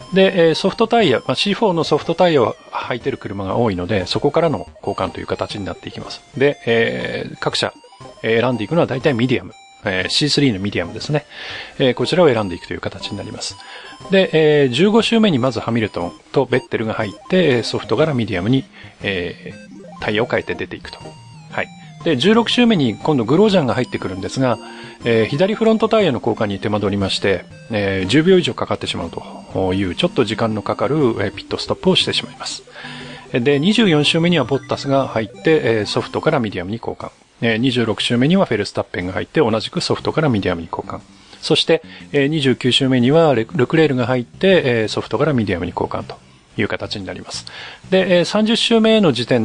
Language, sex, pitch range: Japanese, male, 105-160 Hz